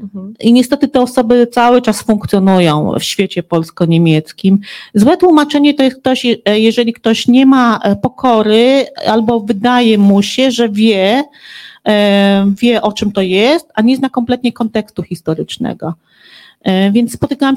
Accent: native